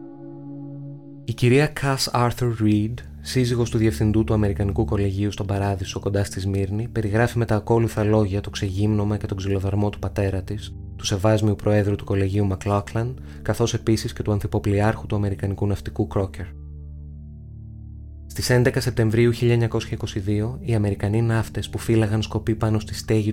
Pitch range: 100-115 Hz